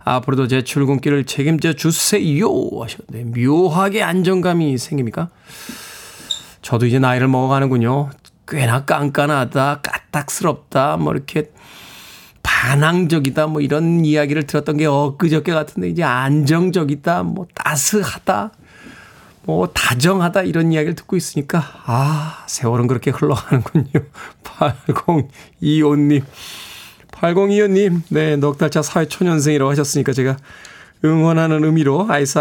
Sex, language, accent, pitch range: male, Korean, native, 130-165 Hz